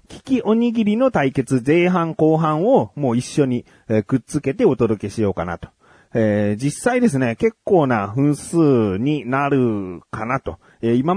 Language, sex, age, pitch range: Japanese, male, 30-49, 105-155 Hz